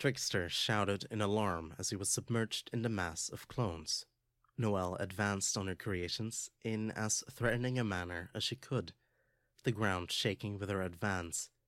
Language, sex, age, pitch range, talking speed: English, male, 30-49, 100-120 Hz, 165 wpm